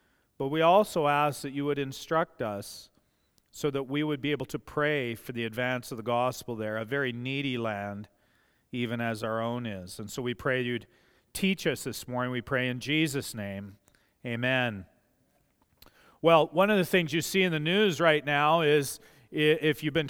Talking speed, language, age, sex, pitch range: 190 wpm, English, 40-59, male, 135-195 Hz